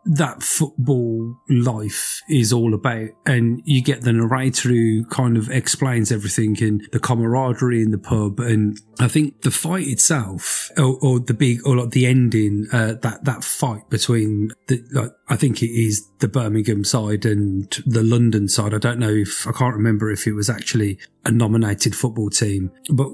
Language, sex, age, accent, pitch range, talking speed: English, male, 30-49, British, 110-135 Hz, 180 wpm